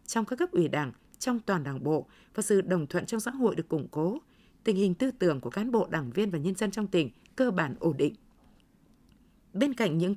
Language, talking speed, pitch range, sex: Vietnamese, 235 wpm, 180-230 Hz, female